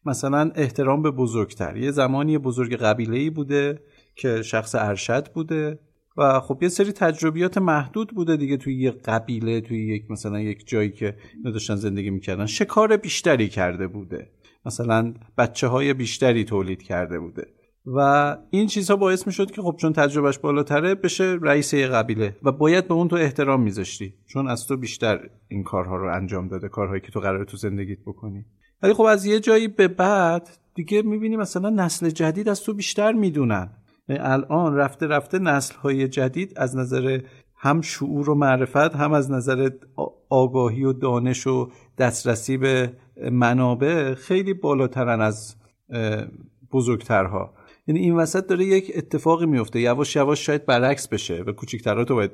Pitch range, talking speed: 110-160 Hz, 155 wpm